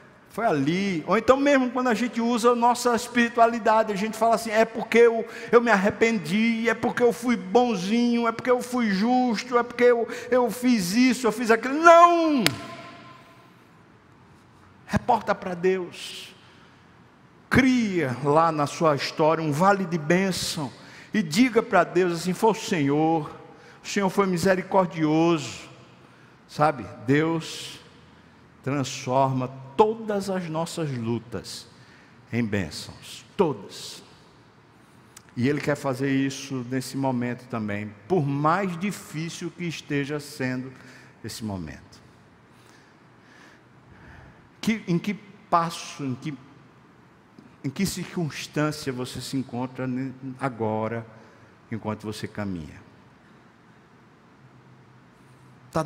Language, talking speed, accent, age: Portuguese, 115 wpm, Brazilian, 60-79